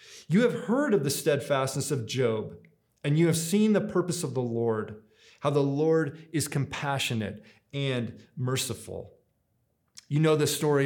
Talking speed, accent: 155 wpm, American